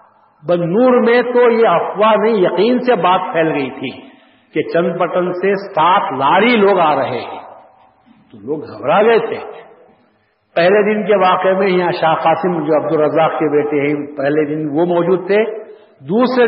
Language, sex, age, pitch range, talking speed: Urdu, male, 60-79, 155-210 Hz, 160 wpm